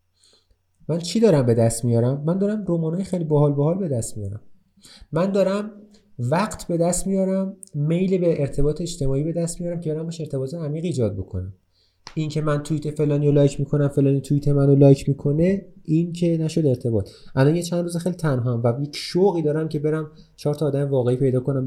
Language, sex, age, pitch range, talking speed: Persian, male, 30-49, 105-155 Hz, 185 wpm